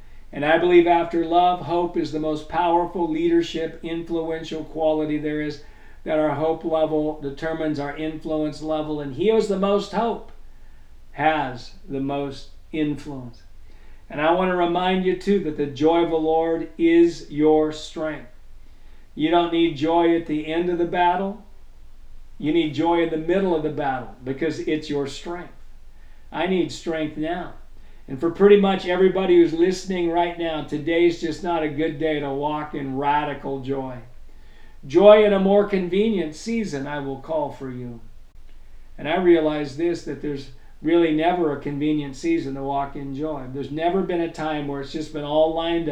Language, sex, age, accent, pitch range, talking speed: English, male, 50-69, American, 145-170 Hz, 175 wpm